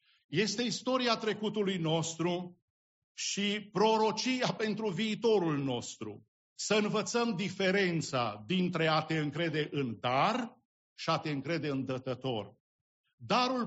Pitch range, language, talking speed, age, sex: 135-195 Hz, English, 110 wpm, 50-69, male